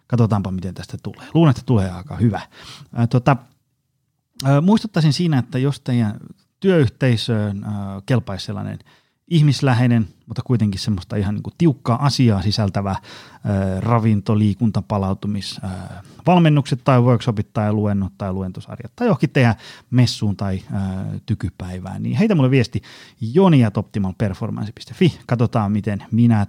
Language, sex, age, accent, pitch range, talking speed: Finnish, male, 30-49, native, 100-130 Hz, 120 wpm